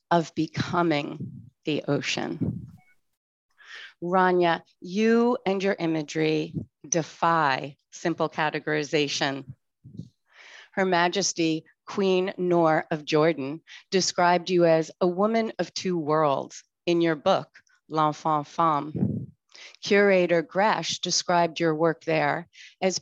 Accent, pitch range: American, 155-185 Hz